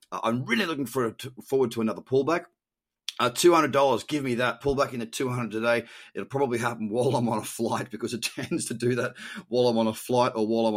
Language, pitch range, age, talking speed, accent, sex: English, 110-145 Hz, 30-49, 230 wpm, Australian, male